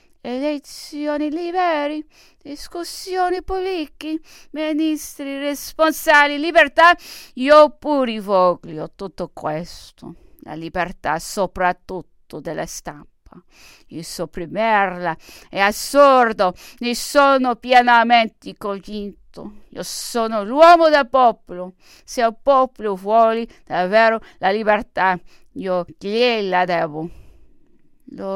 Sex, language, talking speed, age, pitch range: female, English, 85 wpm, 50-69, 180-280 Hz